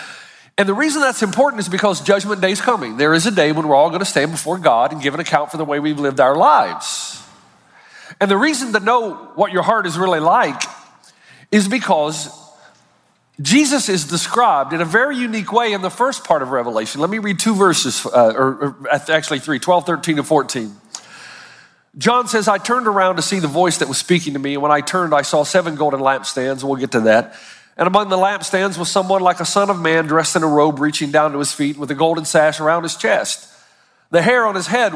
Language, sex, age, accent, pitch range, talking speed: English, male, 50-69, American, 155-215 Hz, 230 wpm